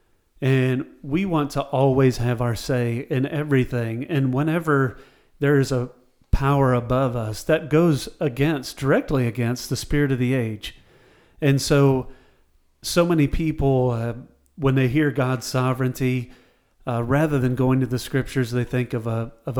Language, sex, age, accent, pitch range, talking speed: English, male, 40-59, American, 125-145 Hz, 155 wpm